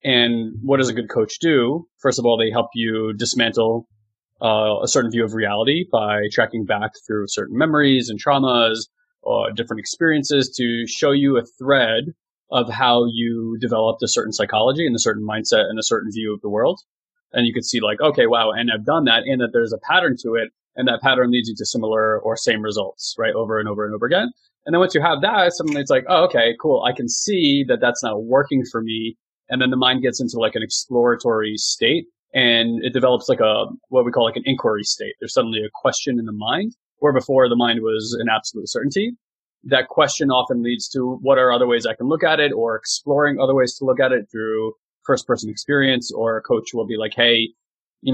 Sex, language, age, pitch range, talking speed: male, English, 20-39, 110-140 Hz, 225 wpm